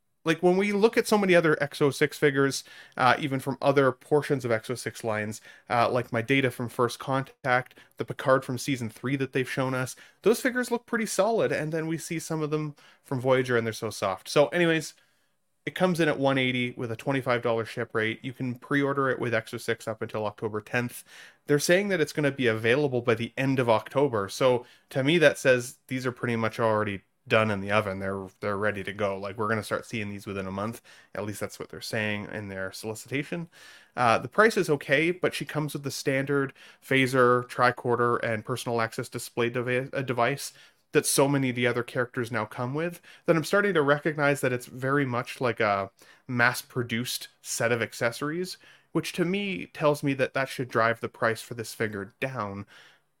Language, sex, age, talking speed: English, male, 30-49, 205 wpm